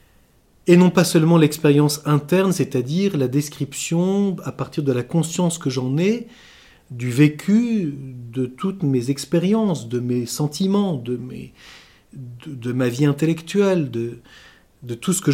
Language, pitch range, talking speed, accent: French, 145-190 Hz, 150 wpm, French